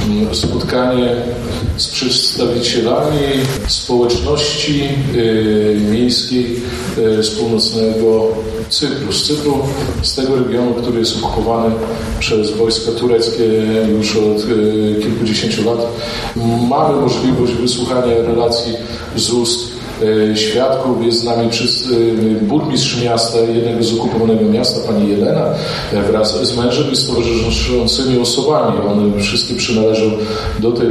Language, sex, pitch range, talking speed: Polish, male, 110-125 Hz, 105 wpm